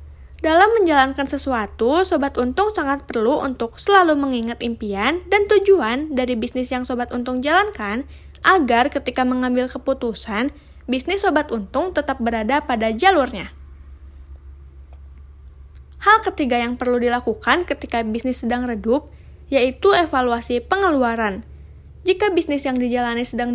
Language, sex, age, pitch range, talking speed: Indonesian, female, 20-39, 235-310 Hz, 120 wpm